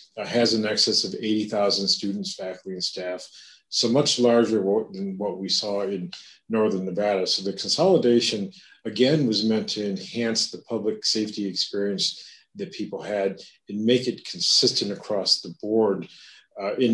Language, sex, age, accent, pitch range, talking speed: English, male, 40-59, American, 100-115 Hz, 150 wpm